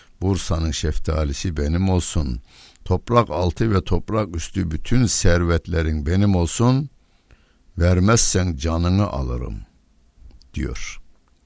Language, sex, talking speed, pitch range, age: Turkish, male, 90 wpm, 75-95 Hz, 60-79